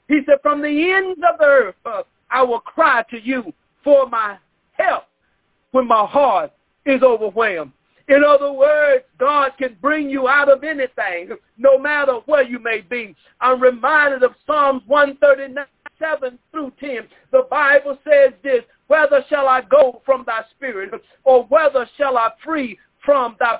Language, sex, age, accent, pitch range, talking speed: English, male, 50-69, American, 260-315 Hz, 160 wpm